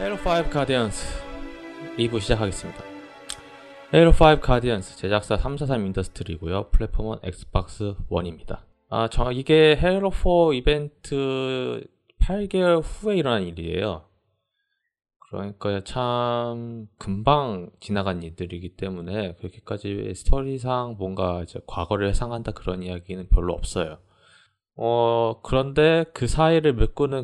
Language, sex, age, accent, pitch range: Korean, male, 20-39, native, 95-125 Hz